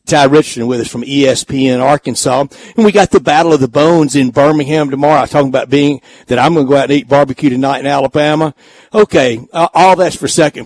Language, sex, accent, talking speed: English, male, American, 230 wpm